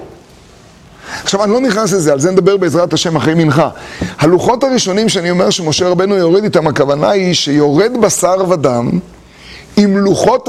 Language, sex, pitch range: Hebrew, male, 180-245 Hz